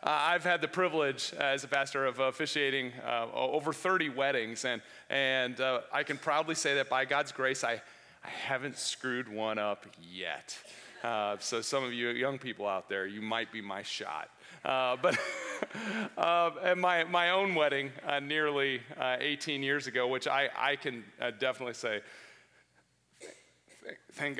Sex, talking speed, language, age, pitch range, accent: male, 170 wpm, English, 40-59, 130-190 Hz, American